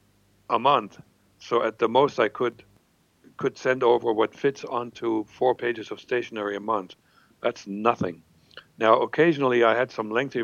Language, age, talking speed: English, 60-79, 160 wpm